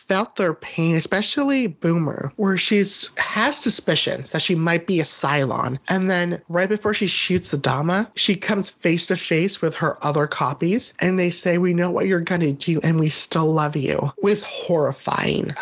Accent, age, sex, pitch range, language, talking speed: American, 30-49, male, 160-190 Hz, English, 190 wpm